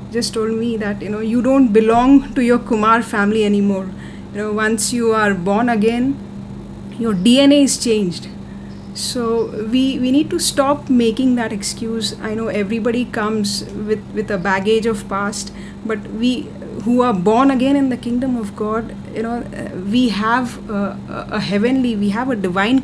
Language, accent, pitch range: English, Indian, 200-240 Hz